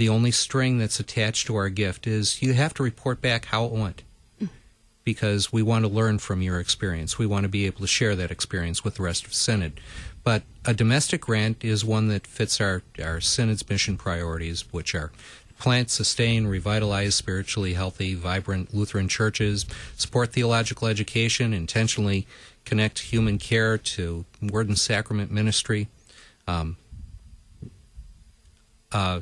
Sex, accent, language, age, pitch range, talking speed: male, American, English, 40-59, 95-115 Hz, 155 wpm